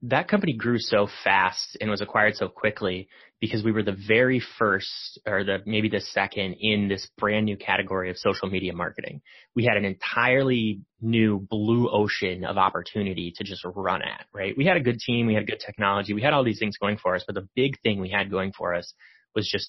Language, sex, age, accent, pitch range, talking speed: English, male, 30-49, American, 100-120 Hz, 220 wpm